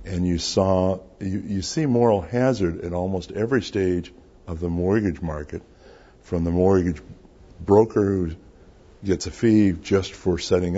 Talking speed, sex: 150 wpm, male